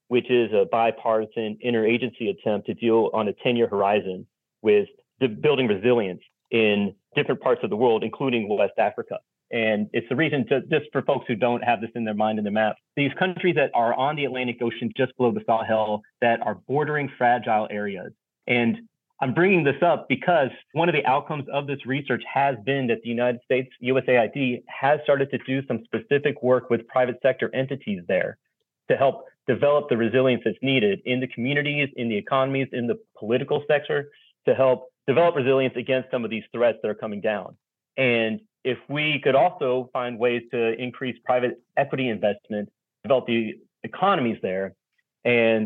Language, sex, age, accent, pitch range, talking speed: English, male, 30-49, American, 115-135 Hz, 185 wpm